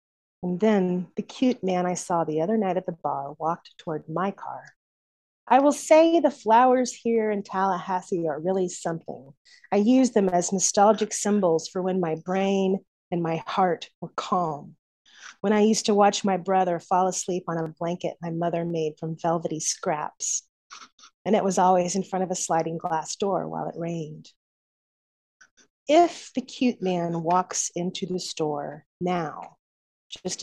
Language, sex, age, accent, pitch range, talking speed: English, female, 30-49, American, 170-210 Hz, 170 wpm